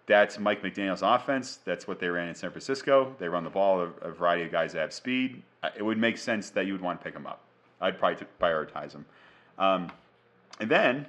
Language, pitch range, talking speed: English, 85-115 Hz, 220 wpm